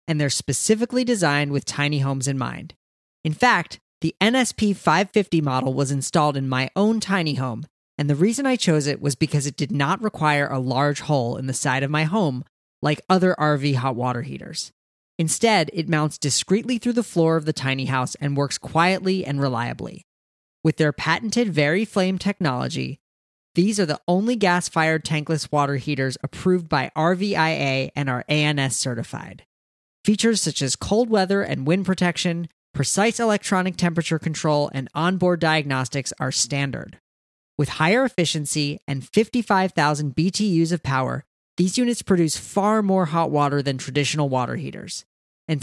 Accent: American